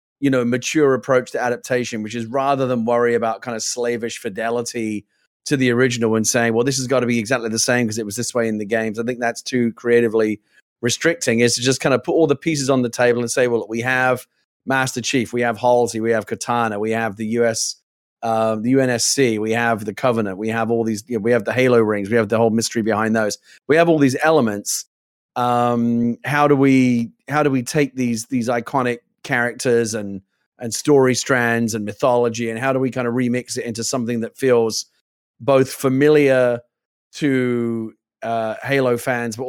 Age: 30-49